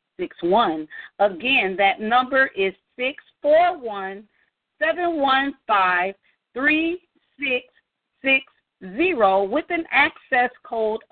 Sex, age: female, 40-59